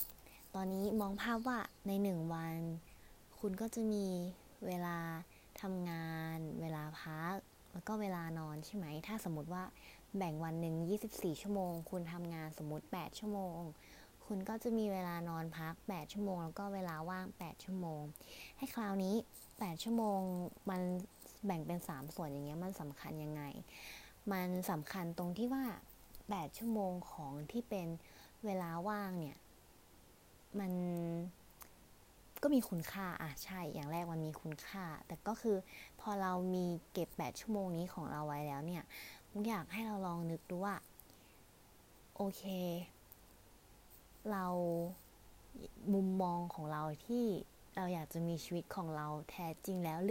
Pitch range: 160-200 Hz